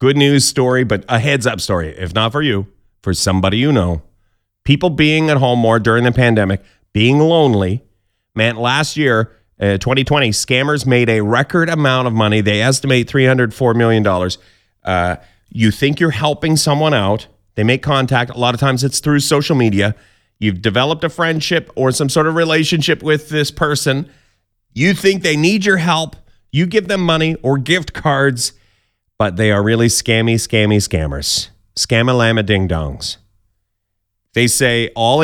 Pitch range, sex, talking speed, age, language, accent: 105-155 Hz, male, 170 wpm, 30-49, English, American